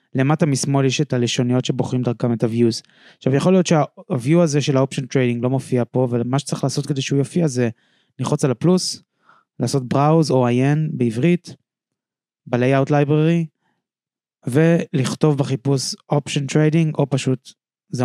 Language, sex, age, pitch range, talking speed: Hebrew, male, 20-39, 125-160 Hz, 140 wpm